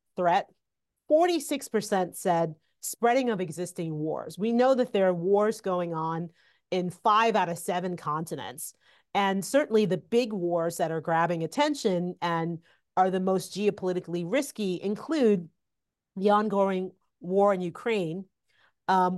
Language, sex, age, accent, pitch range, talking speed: English, female, 40-59, American, 175-215 Hz, 135 wpm